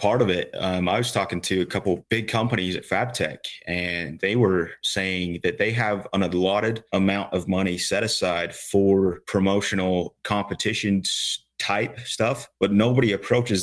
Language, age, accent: English, 30-49, American